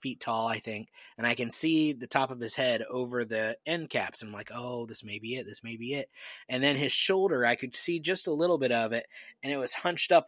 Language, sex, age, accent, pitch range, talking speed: English, male, 20-39, American, 120-140 Hz, 270 wpm